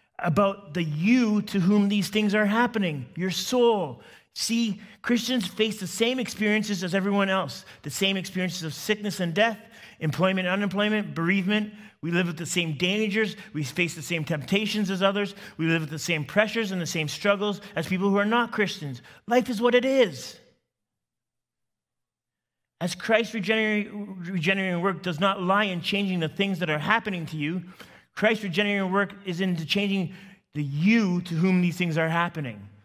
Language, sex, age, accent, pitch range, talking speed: English, male, 30-49, American, 155-200 Hz, 175 wpm